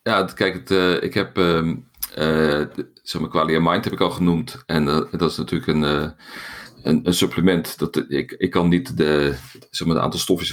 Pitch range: 80-95 Hz